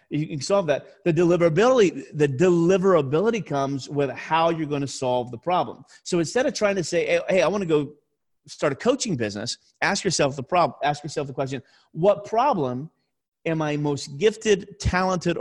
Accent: American